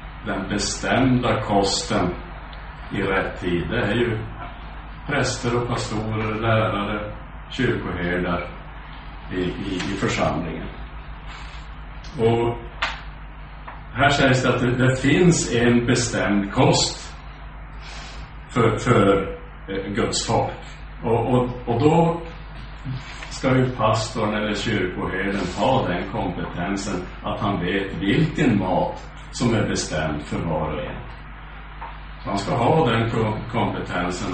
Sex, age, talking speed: male, 60-79, 110 wpm